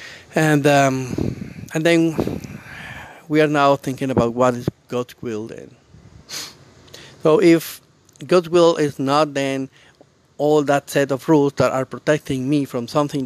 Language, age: English, 50-69